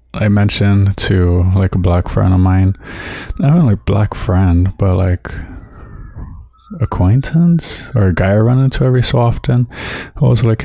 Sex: male